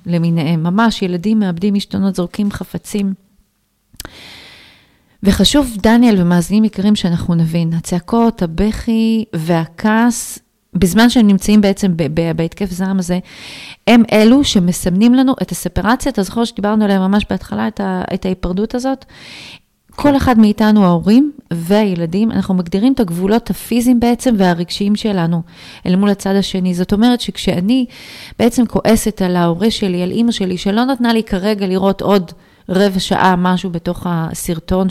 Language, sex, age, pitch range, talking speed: Hebrew, female, 30-49, 180-225 Hz, 140 wpm